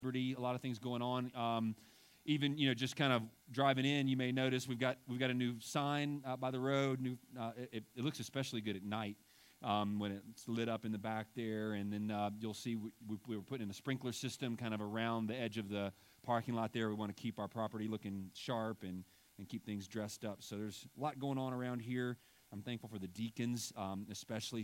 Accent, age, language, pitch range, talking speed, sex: American, 30-49, English, 100-125 Hz, 245 wpm, male